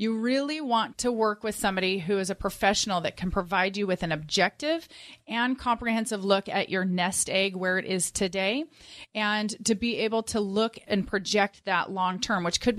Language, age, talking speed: English, 30-49, 190 wpm